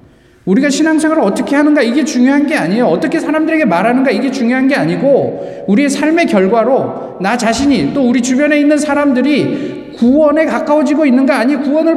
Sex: male